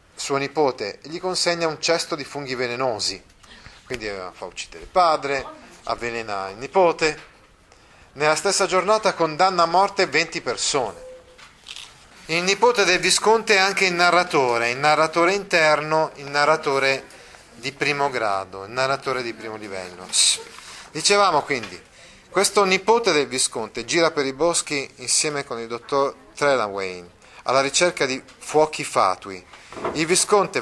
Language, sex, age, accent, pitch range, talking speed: Italian, male, 30-49, native, 130-170 Hz, 135 wpm